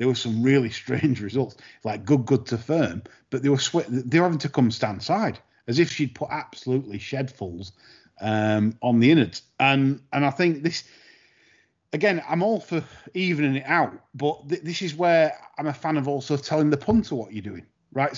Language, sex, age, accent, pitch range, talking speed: English, male, 30-49, British, 120-170 Hz, 200 wpm